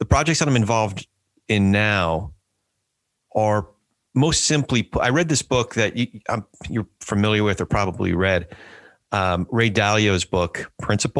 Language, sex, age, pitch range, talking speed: English, male, 40-59, 95-115 Hz, 135 wpm